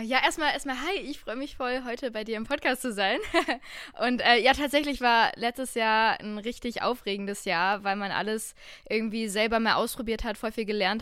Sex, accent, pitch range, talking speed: female, German, 215-255 Hz, 200 wpm